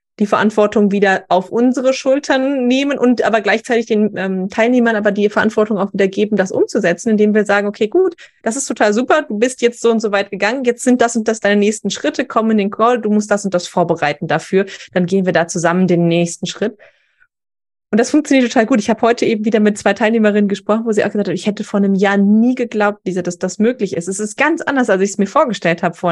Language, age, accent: German, 20-39, German